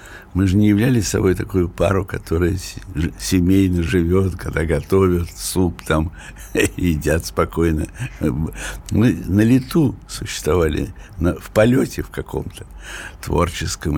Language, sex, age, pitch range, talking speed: Russian, male, 60-79, 85-115 Hz, 105 wpm